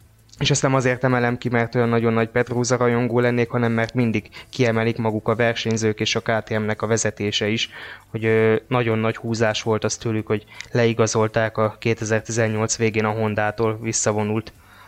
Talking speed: 160 wpm